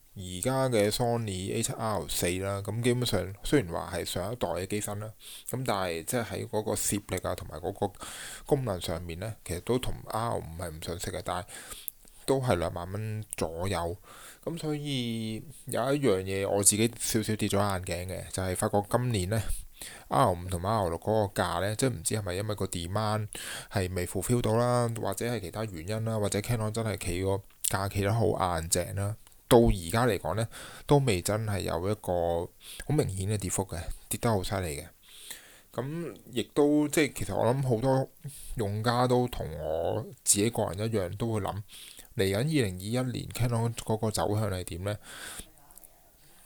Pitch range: 95-120 Hz